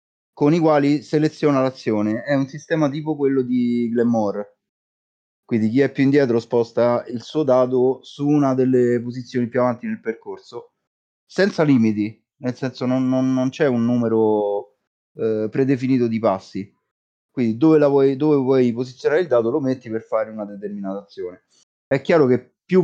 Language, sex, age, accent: Italian, male, 30-49, native